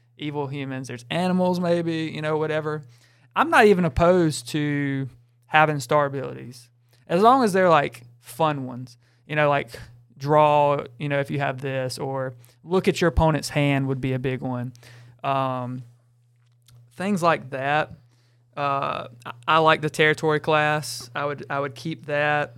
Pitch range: 125-155 Hz